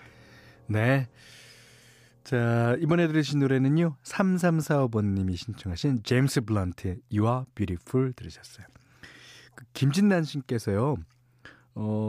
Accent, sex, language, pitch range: native, male, Korean, 105-145 Hz